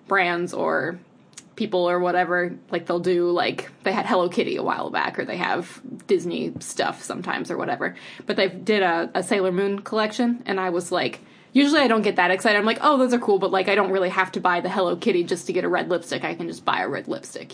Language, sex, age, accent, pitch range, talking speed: English, female, 20-39, American, 180-215 Hz, 245 wpm